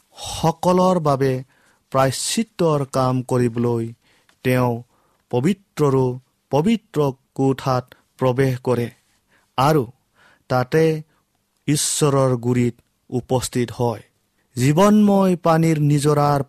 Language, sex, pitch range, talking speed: English, male, 120-150 Hz, 75 wpm